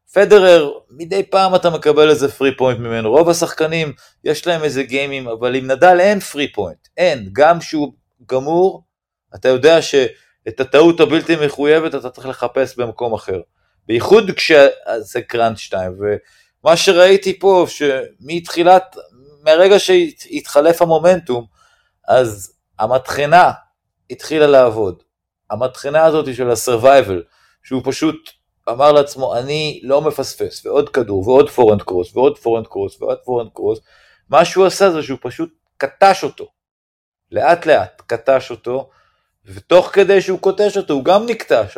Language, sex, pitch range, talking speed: Hebrew, male, 135-190 Hz, 130 wpm